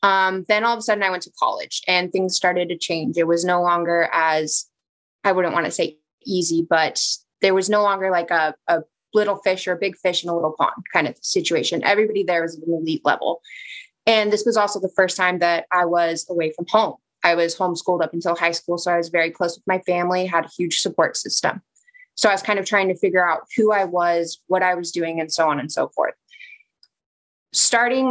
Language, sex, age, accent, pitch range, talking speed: English, female, 20-39, American, 170-200 Hz, 235 wpm